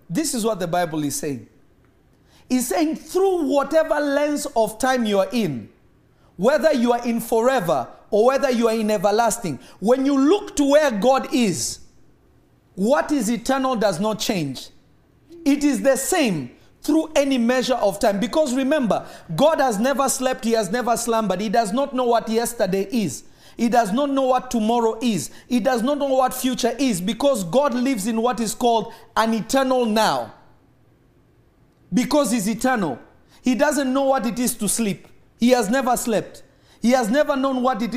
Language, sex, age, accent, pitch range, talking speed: English, male, 40-59, South African, 230-285 Hz, 175 wpm